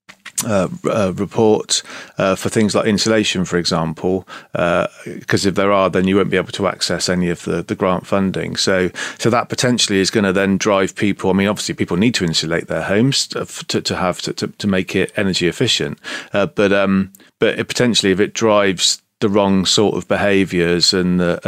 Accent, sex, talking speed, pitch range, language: British, male, 205 wpm, 95-110 Hz, English